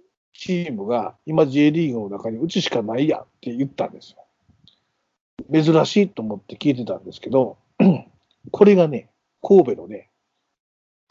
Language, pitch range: Japanese, 130-170 Hz